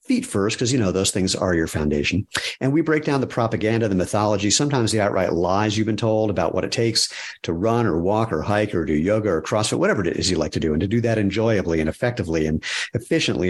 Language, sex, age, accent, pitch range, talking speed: English, male, 50-69, American, 95-120 Hz, 250 wpm